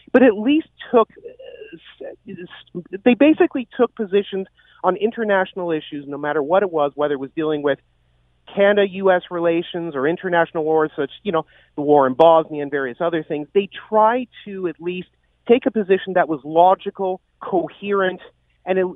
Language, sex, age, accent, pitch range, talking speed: English, male, 40-59, American, 155-200 Hz, 160 wpm